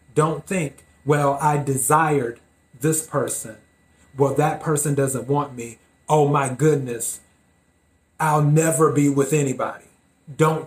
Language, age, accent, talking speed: English, 30-49, American, 125 wpm